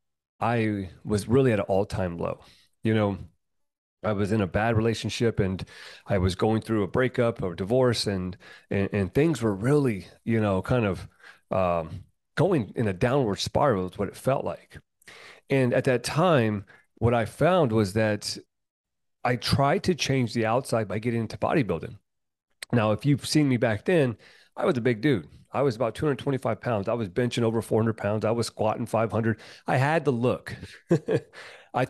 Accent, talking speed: American, 180 wpm